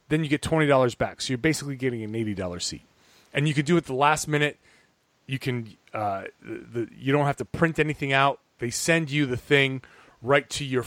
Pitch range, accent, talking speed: 130-170 Hz, American, 235 wpm